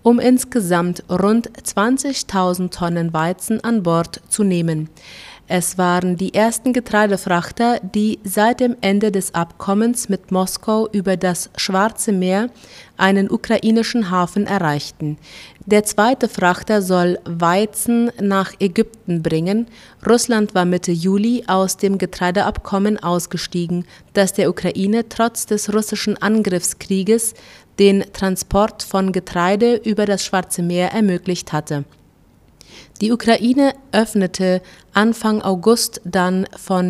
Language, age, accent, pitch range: German, 30-49, German, 180-215 Hz